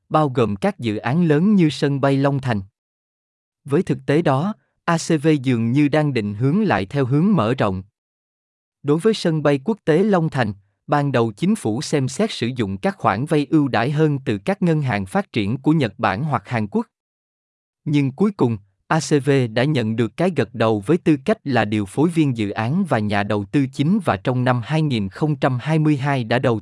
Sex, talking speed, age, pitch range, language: male, 205 wpm, 20-39, 110-155 Hz, Vietnamese